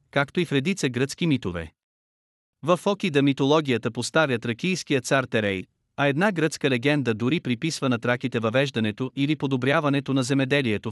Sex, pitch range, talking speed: male, 120-150 Hz, 145 wpm